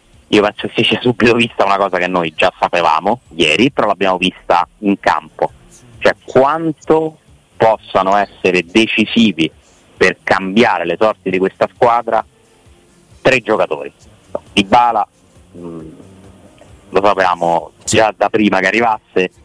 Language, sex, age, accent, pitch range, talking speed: Italian, male, 30-49, native, 90-115 Hz, 130 wpm